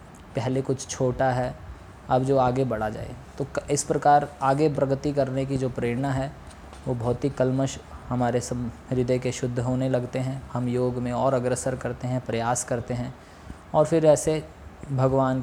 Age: 20-39